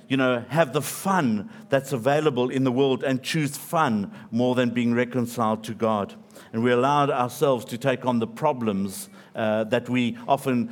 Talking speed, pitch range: 180 wpm, 125-165 Hz